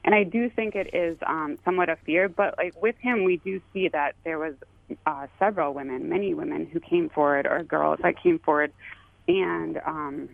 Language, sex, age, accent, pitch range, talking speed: English, female, 20-39, American, 155-230 Hz, 210 wpm